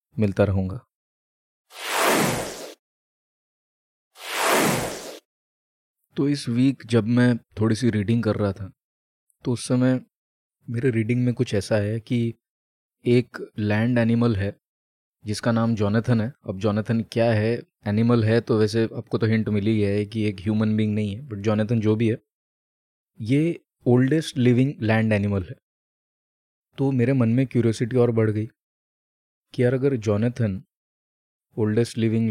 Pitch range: 110-125 Hz